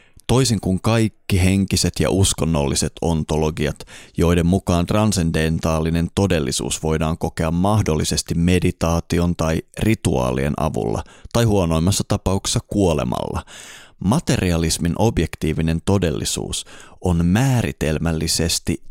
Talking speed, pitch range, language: 85 wpm, 80-100 Hz, Finnish